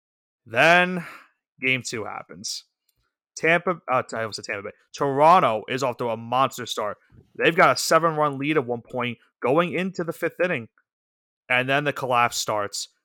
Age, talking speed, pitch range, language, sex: 30-49, 165 wpm, 135-180 Hz, English, male